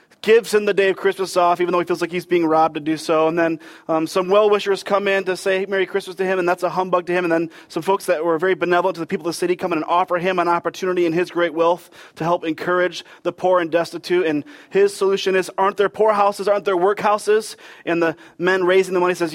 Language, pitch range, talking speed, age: English, 170-205 Hz, 270 wpm, 30-49